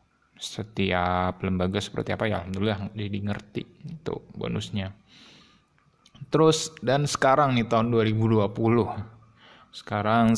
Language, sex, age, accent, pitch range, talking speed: Indonesian, male, 20-39, native, 100-120 Hz, 105 wpm